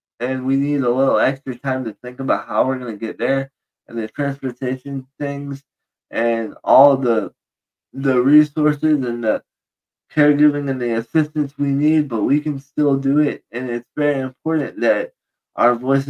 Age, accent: 20-39, American